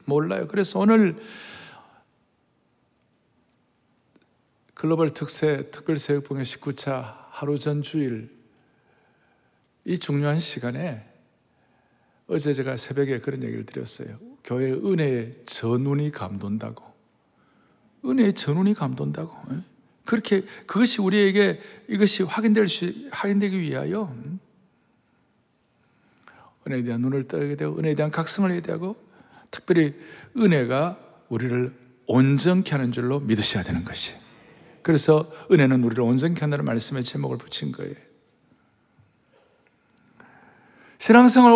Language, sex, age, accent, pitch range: Korean, male, 60-79, native, 135-200 Hz